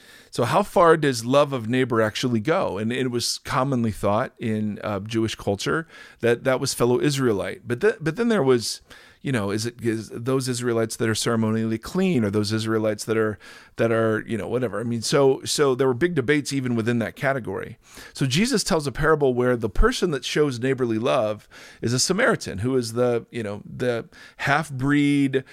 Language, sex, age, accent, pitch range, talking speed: English, male, 40-59, American, 115-145 Hz, 195 wpm